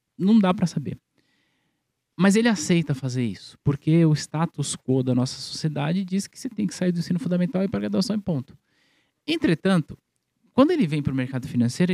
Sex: male